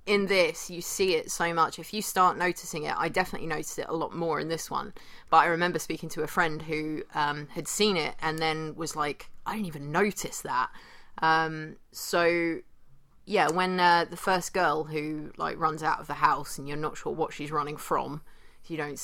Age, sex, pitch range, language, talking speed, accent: 30-49, female, 155-180 Hz, English, 215 wpm, British